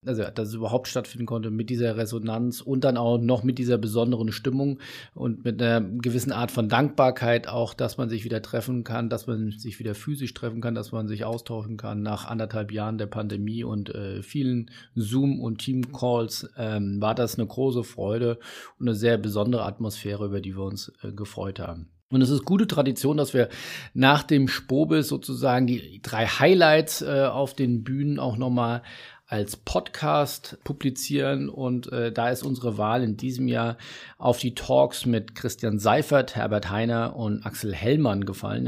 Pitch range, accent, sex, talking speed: 110-130 Hz, German, male, 185 wpm